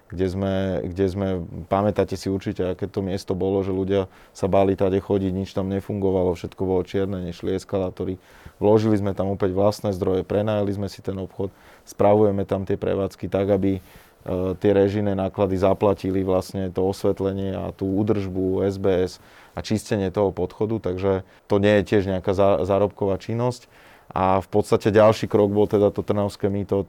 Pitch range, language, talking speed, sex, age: 95-105 Hz, Slovak, 170 wpm, male, 30-49